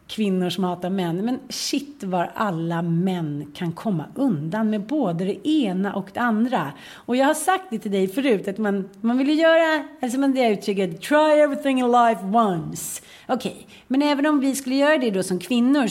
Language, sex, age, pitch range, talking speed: Swedish, female, 40-59, 175-240 Hz, 190 wpm